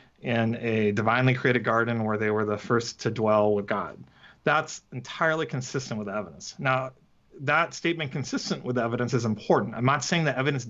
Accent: American